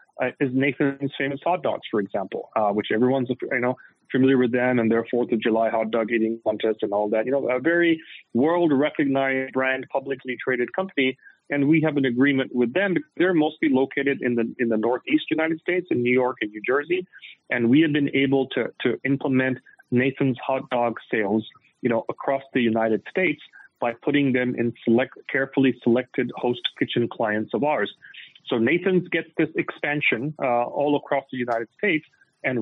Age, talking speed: 30-49, 190 wpm